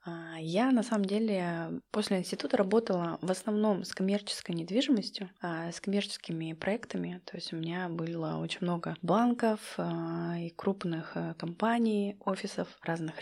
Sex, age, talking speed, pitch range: female, 20-39, 125 wpm, 180-230 Hz